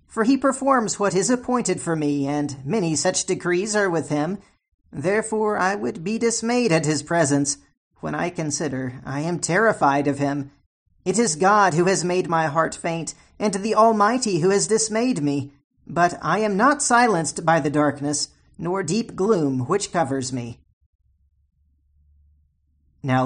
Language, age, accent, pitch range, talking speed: English, 40-59, American, 145-210 Hz, 160 wpm